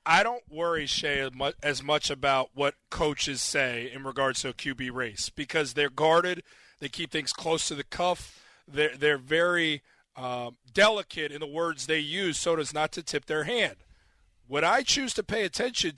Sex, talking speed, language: male, 185 wpm, English